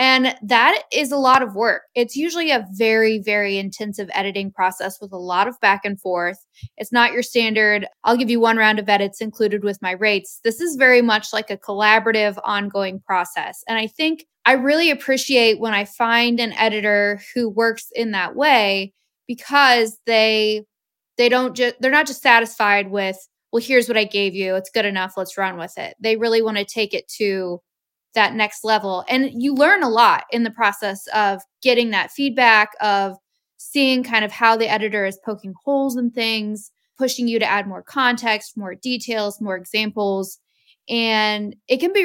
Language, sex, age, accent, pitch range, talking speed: English, female, 20-39, American, 205-245 Hz, 190 wpm